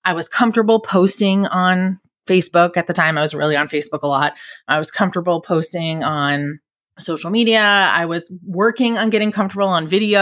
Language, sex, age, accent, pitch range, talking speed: English, female, 20-39, American, 160-215 Hz, 180 wpm